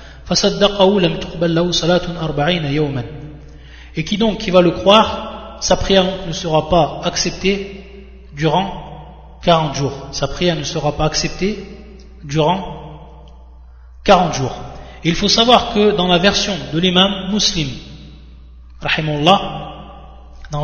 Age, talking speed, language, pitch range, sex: 30-49, 115 wpm, French, 150-195 Hz, male